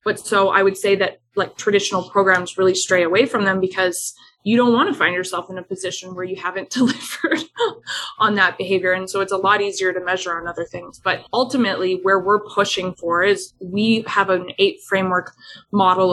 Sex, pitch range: female, 180-210 Hz